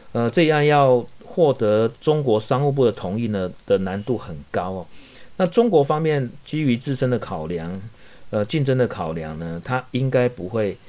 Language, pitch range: Chinese, 95-135 Hz